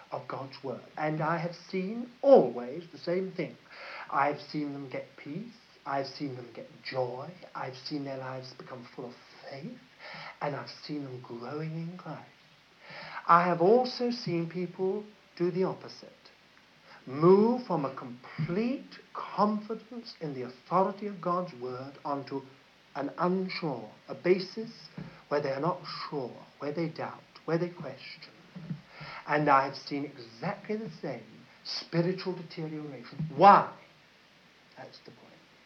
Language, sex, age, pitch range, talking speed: English, male, 60-79, 150-210 Hz, 140 wpm